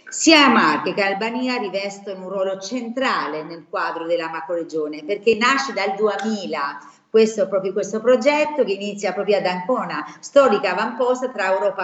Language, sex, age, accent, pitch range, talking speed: Italian, female, 40-59, native, 175-235 Hz, 140 wpm